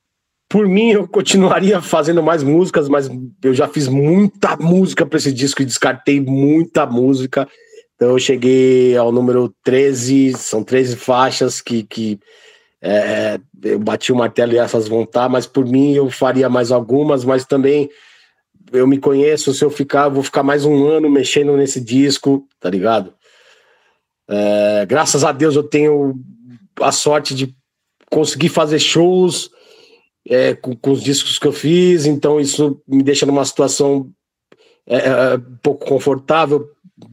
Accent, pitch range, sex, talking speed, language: Brazilian, 130-155 Hz, male, 155 wpm, Portuguese